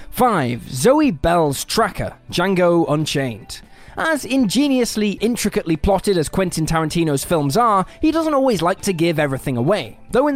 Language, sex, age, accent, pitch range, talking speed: English, male, 20-39, British, 160-235 Hz, 145 wpm